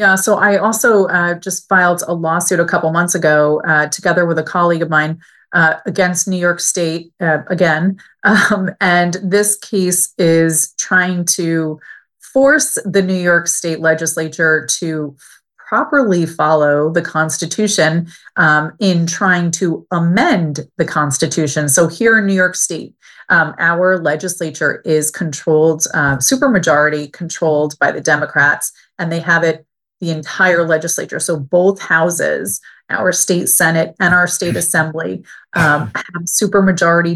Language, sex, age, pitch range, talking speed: English, female, 30-49, 160-185 Hz, 145 wpm